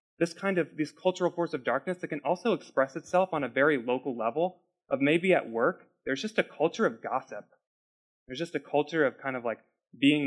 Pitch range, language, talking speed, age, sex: 120-155 Hz, English, 215 wpm, 20-39, male